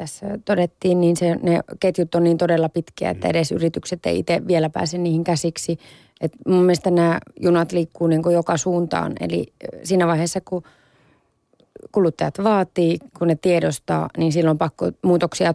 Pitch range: 165-180 Hz